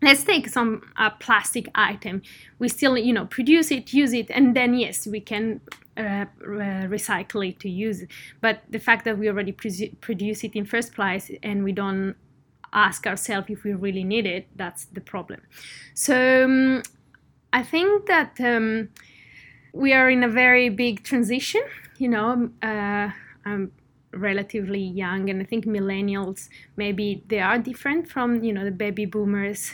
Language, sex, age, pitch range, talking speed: English, female, 20-39, 195-240 Hz, 170 wpm